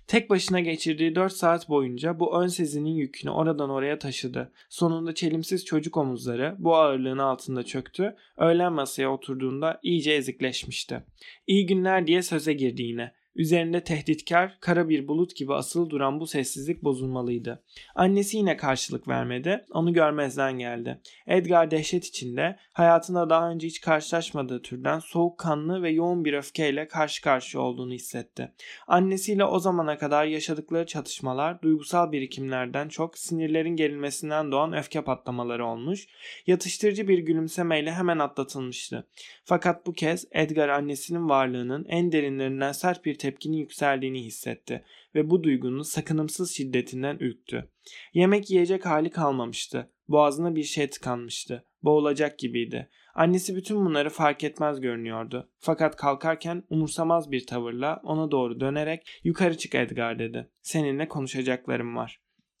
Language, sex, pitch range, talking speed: Turkish, male, 135-170 Hz, 135 wpm